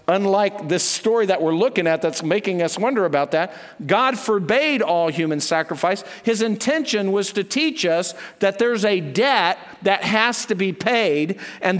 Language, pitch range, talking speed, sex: English, 175-225 Hz, 175 wpm, male